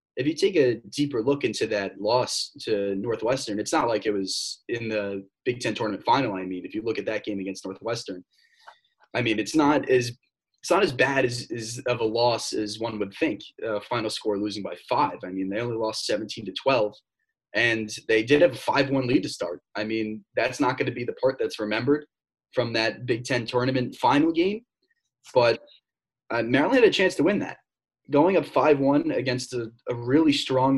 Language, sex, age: English, male, 20-39